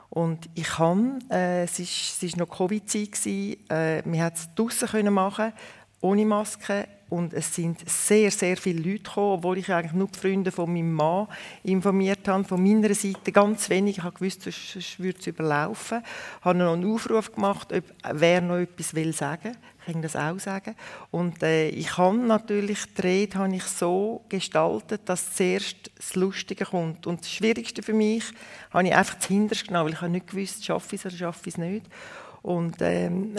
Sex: female